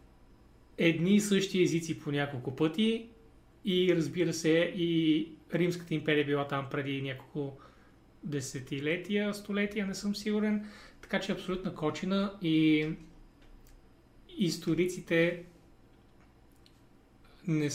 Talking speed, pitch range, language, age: 105 wpm, 145-180 Hz, Bulgarian, 30-49